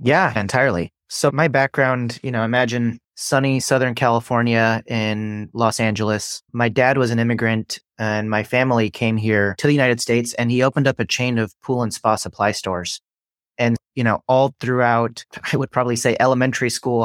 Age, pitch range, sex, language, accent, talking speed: 30-49, 110-125 Hz, male, English, American, 180 wpm